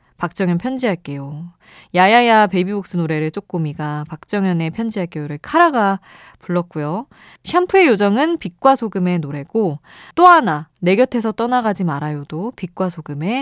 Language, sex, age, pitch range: Korean, female, 20-39, 160-230 Hz